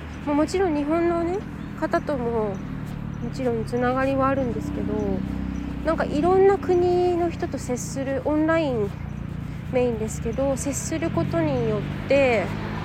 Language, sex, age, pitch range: Japanese, female, 20-39, 220-315 Hz